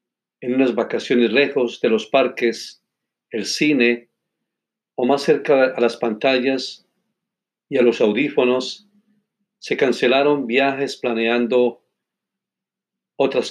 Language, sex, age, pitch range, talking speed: Spanish, male, 50-69, 120-140 Hz, 105 wpm